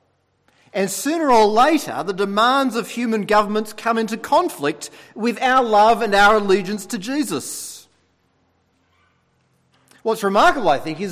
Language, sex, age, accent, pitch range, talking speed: English, male, 40-59, Australian, 185-265 Hz, 135 wpm